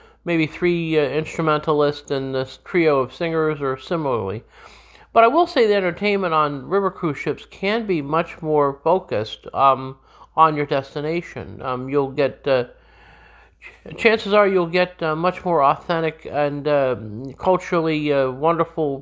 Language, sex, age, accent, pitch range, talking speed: English, male, 50-69, American, 135-175 Hz, 155 wpm